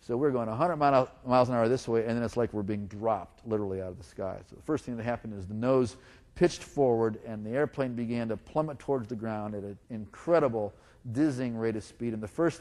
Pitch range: 105-125 Hz